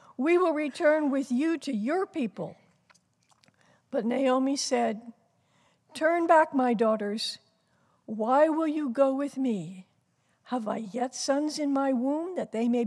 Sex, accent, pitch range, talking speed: female, American, 230-315 Hz, 145 wpm